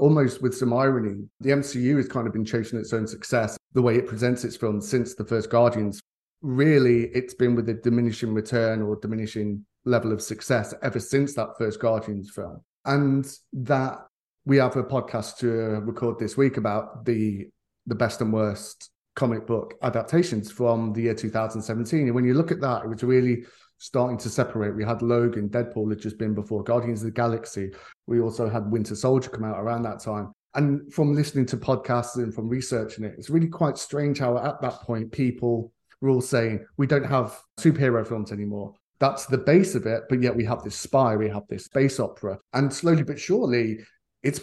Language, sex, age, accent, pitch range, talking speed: English, male, 30-49, British, 110-130 Hz, 200 wpm